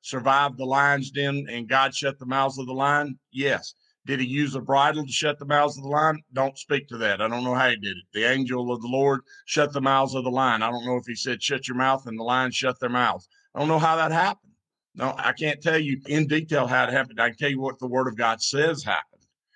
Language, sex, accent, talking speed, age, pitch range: English, male, American, 275 wpm, 50-69, 125-145 Hz